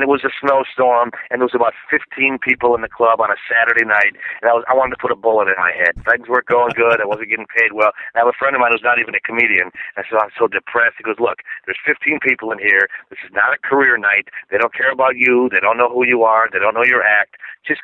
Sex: male